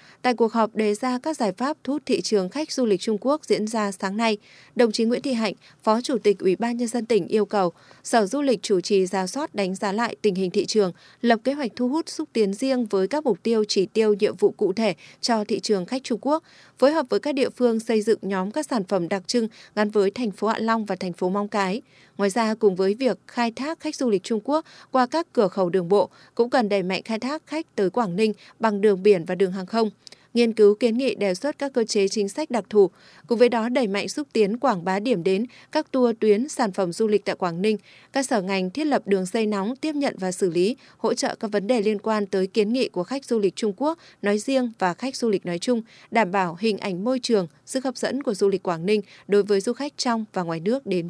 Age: 20-39